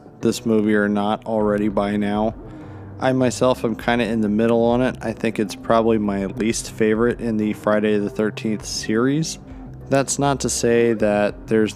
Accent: American